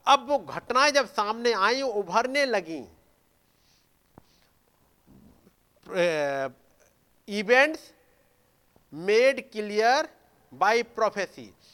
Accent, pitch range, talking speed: native, 180-235 Hz, 65 wpm